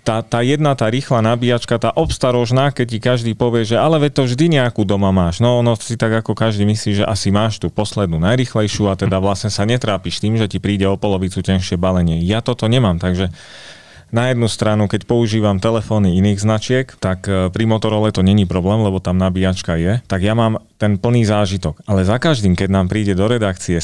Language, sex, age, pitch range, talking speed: Slovak, male, 30-49, 95-115 Hz, 205 wpm